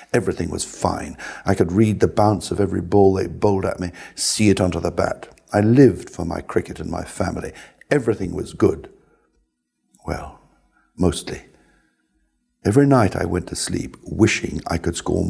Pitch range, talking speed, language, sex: 90-100 Hz, 170 wpm, English, male